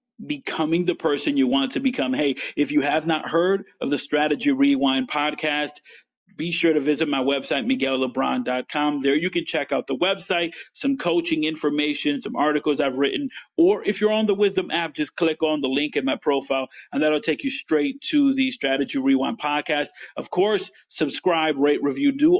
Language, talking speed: English, 190 wpm